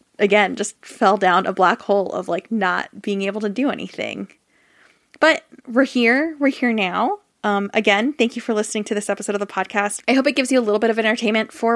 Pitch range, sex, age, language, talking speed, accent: 195-235 Hz, female, 20-39, English, 225 wpm, American